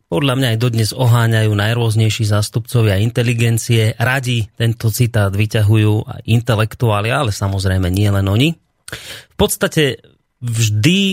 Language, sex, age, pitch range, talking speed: Slovak, male, 30-49, 105-125 Hz, 120 wpm